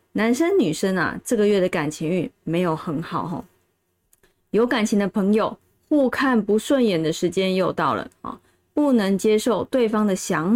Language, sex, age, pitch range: Chinese, female, 20-39, 180-240 Hz